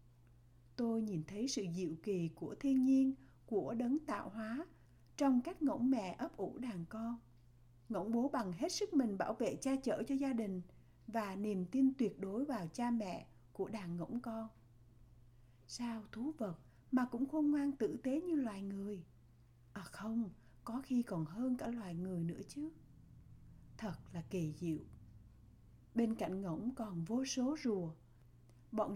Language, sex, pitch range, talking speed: Vietnamese, female, 165-255 Hz, 170 wpm